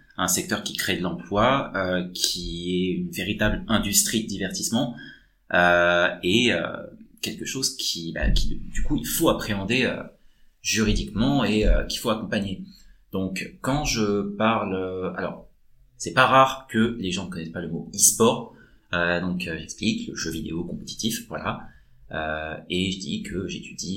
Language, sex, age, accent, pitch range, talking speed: French, male, 30-49, French, 85-110 Hz, 170 wpm